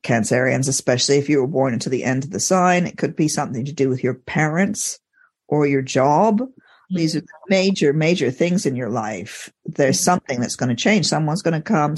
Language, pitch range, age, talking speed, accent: English, 140-185 Hz, 50-69, 215 wpm, American